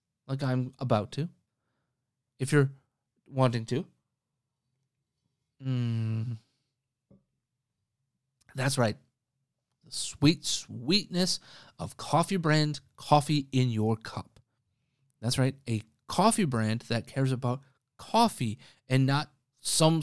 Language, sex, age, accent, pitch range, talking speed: English, male, 30-49, American, 120-150 Hz, 100 wpm